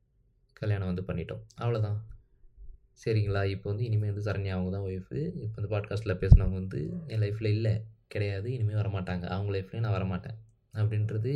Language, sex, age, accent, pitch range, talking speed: Tamil, male, 20-39, native, 95-110 Hz, 155 wpm